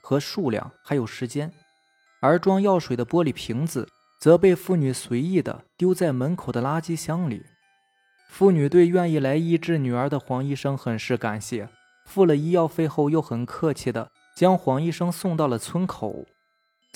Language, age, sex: Chinese, 20-39, male